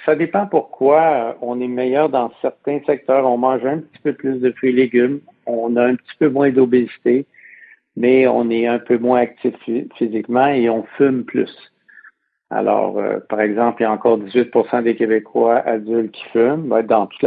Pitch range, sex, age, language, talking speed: 110-125 Hz, male, 60-79, French, 190 wpm